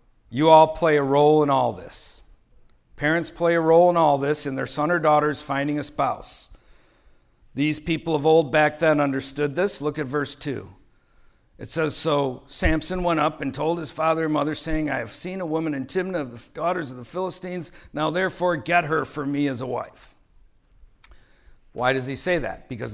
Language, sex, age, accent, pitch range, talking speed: English, male, 50-69, American, 125-155 Hz, 200 wpm